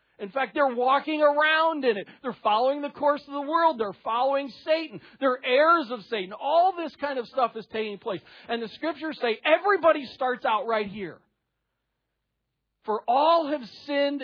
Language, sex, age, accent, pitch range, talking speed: English, male, 40-59, American, 175-260 Hz, 175 wpm